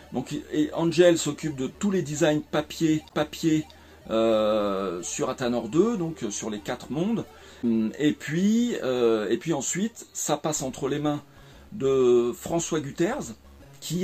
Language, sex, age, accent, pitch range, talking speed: French, male, 40-59, French, 120-155 Hz, 145 wpm